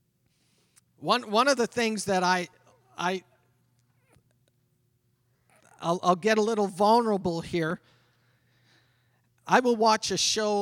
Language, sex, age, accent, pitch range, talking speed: English, male, 40-59, American, 125-200 Hz, 115 wpm